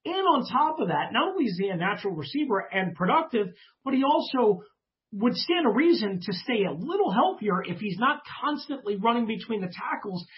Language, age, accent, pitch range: English, 40-59, American, 185-255 Hz